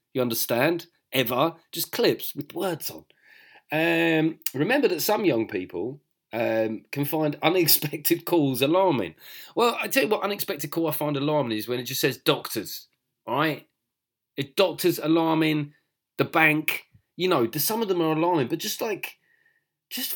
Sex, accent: male, British